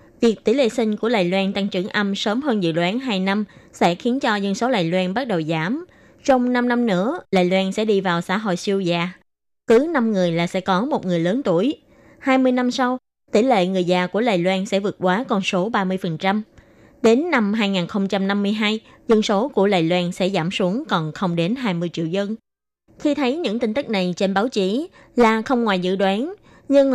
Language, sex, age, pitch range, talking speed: Vietnamese, female, 20-39, 190-250 Hz, 215 wpm